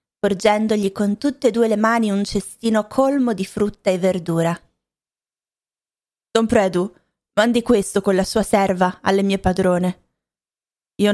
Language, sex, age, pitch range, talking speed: Italian, female, 20-39, 185-220 Hz, 140 wpm